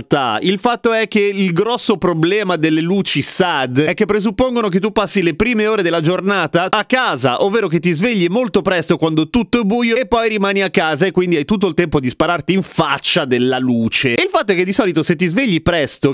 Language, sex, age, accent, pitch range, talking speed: Italian, male, 30-49, native, 135-195 Hz, 225 wpm